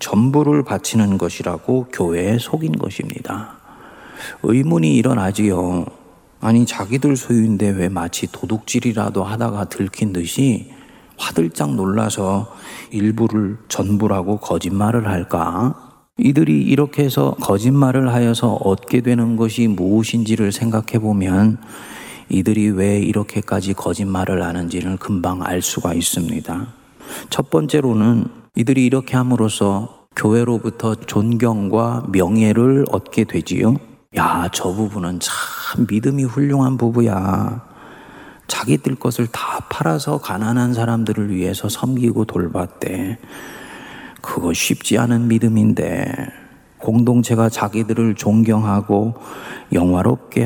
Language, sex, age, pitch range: Korean, male, 40-59, 95-120 Hz